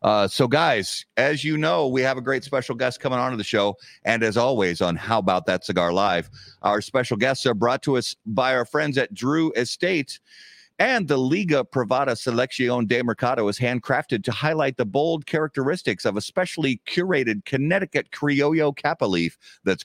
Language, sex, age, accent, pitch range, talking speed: English, male, 50-69, American, 105-150 Hz, 185 wpm